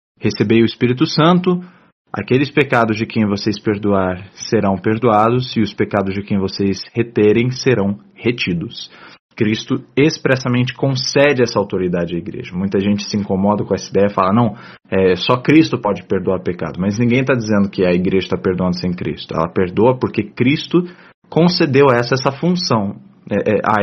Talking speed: 150 wpm